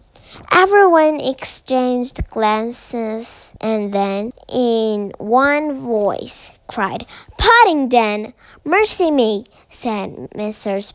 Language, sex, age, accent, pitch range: Chinese, male, 20-39, American, 210-295 Hz